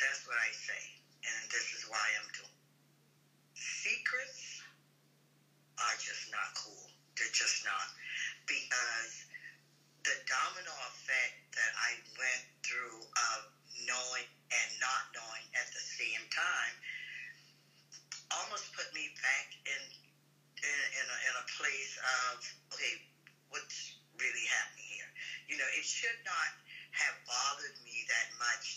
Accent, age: American, 50-69